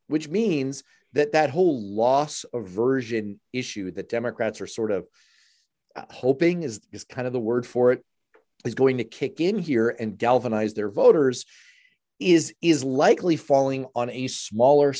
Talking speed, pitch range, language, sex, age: 155 wpm, 110-150 Hz, English, male, 40-59